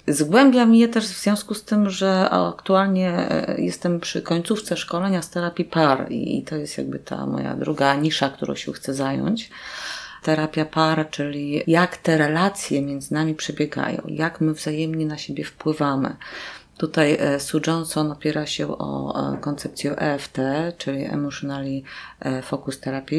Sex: female